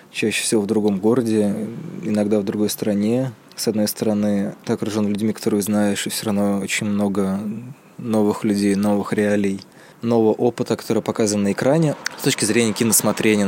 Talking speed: 160 wpm